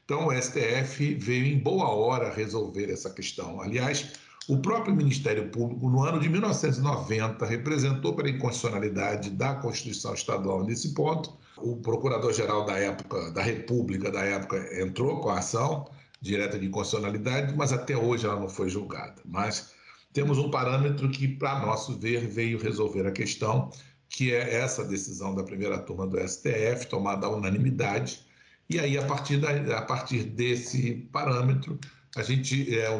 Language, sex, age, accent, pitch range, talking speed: Portuguese, male, 60-79, Brazilian, 105-140 Hz, 145 wpm